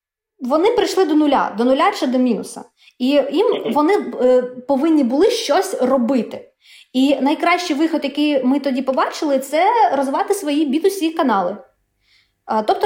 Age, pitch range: 20-39, 240-325 Hz